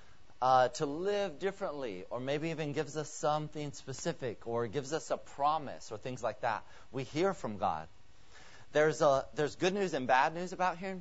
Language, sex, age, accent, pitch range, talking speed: English, male, 30-49, American, 130-185 Hz, 185 wpm